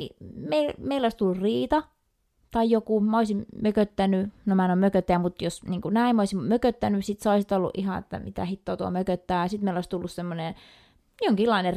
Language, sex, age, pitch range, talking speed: Finnish, female, 20-39, 190-240 Hz, 190 wpm